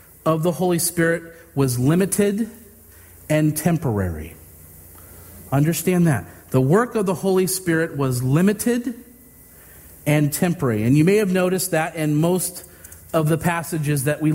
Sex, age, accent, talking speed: male, 40-59, American, 140 wpm